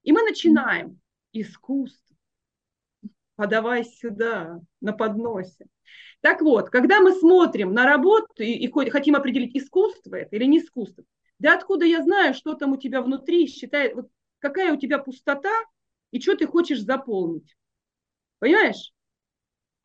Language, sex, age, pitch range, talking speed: Russian, female, 30-49, 235-335 Hz, 135 wpm